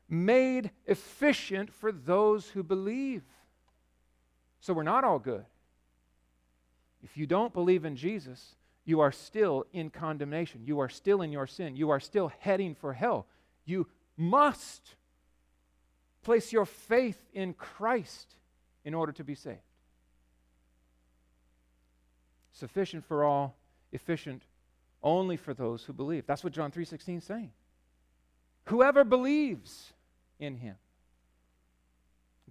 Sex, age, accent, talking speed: male, 40-59, American, 120 wpm